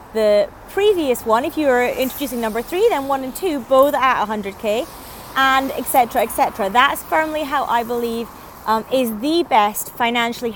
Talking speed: 170 wpm